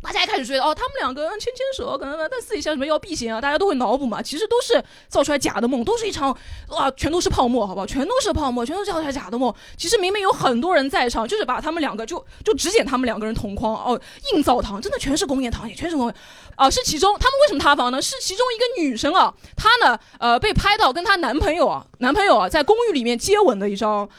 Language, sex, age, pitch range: Chinese, female, 20-39, 245-380 Hz